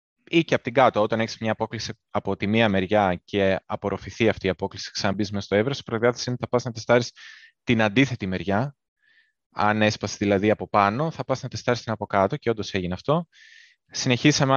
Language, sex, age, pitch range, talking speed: Greek, male, 20-39, 100-130 Hz, 205 wpm